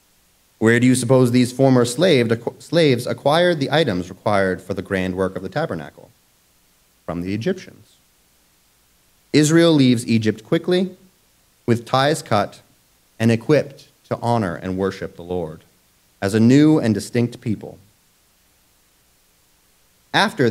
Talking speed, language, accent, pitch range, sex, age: 125 wpm, English, American, 90-145 Hz, male, 30-49